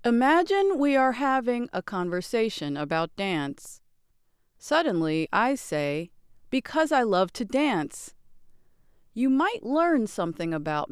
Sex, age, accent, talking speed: female, 40-59, American, 115 wpm